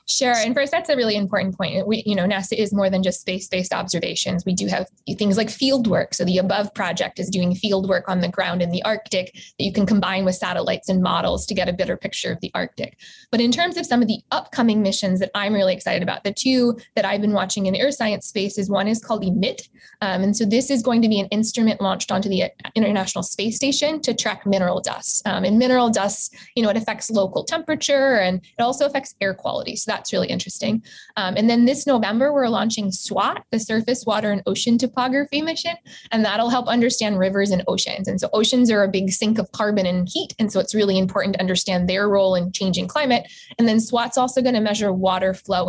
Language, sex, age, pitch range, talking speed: English, female, 20-39, 190-230 Hz, 230 wpm